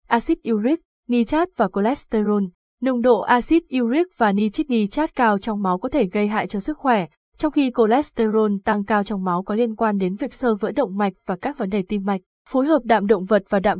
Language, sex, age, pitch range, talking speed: Vietnamese, female, 20-39, 195-235 Hz, 215 wpm